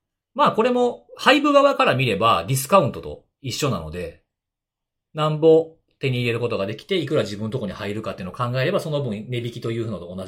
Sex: male